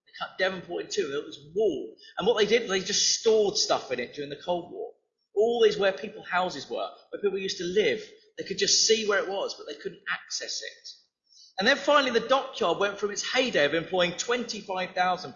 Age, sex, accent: 30-49, male, British